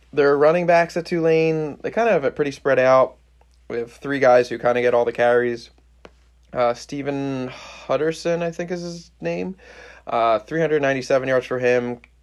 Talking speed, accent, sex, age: 180 wpm, American, male, 20-39